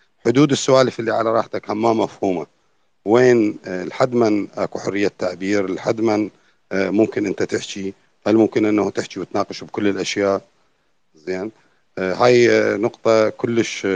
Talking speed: 125 wpm